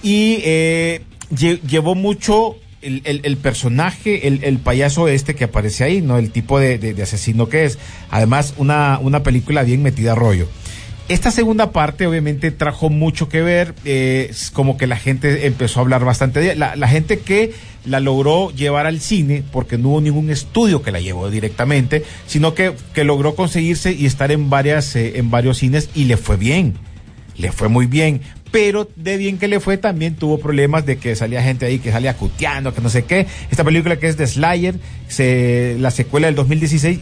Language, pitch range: Spanish, 125-165 Hz